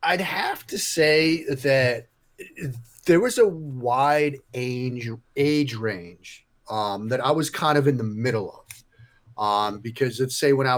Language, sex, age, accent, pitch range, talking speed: English, male, 30-49, American, 120-140 Hz, 155 wpm